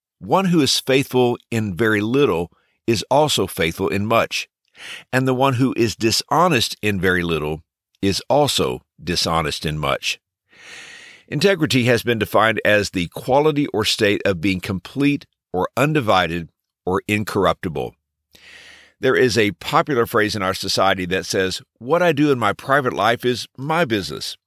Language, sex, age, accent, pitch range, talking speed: English, male, 50-69, American, 100-145 Hz, 150 wpm